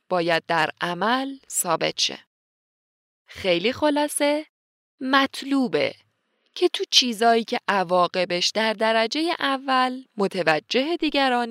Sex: female